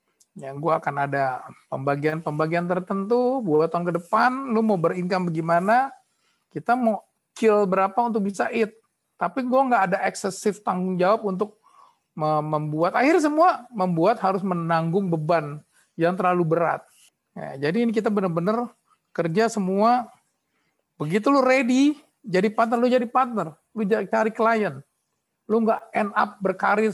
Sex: male